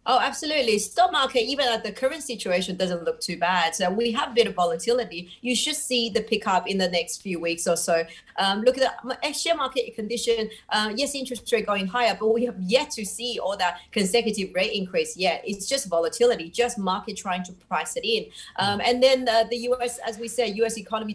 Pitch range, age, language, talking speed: 185-240 Hz, 30-49, English, 220 wpm